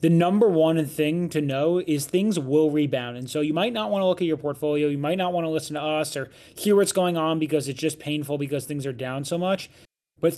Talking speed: 250 wpm